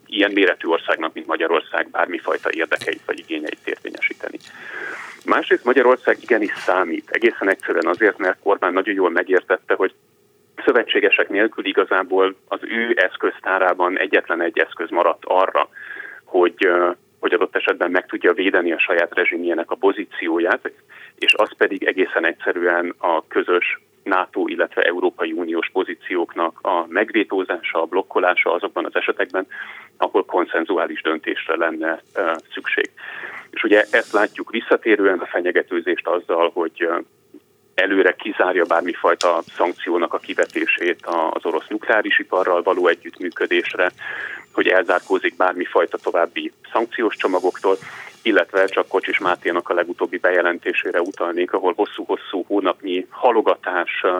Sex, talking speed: male, 120 wpm